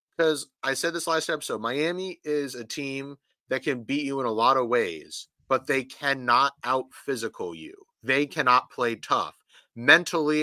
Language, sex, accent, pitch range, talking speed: English, male, American, 130-175 Hz, 175 wpm